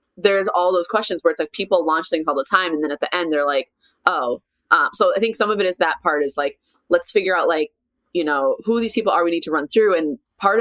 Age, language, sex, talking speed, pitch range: 20-39, English, female, 285 wpm, 150-195 Hz